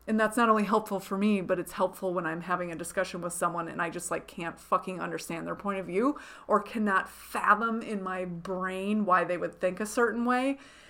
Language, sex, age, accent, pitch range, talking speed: English, female, 30-49, American, 185-215 Hz, 225 wpm